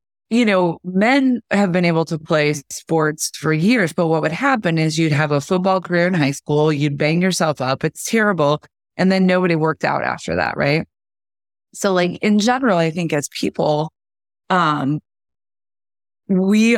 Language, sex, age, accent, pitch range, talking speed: English, female, 20-39, American, 145-185 Hz, 170 wpm